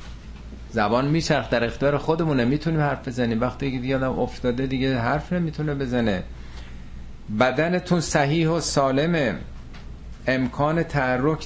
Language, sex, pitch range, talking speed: Persian, male, 90-140 Hz, 120 wpm